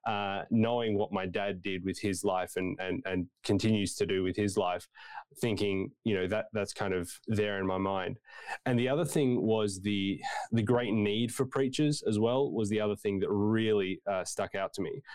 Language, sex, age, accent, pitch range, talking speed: English, male, 20-39, Australian, 100-125 Hz, 210 wpm